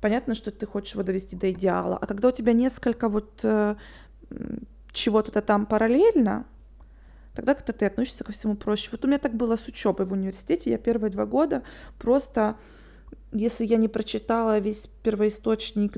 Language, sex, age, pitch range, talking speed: Russian, female, 20-39, 205-260 Hz, 165 wpm